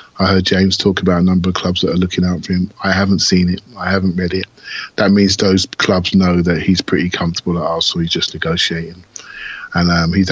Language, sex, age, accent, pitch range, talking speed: English, male, 30-49, British, 85-105 Hz, 235 wpm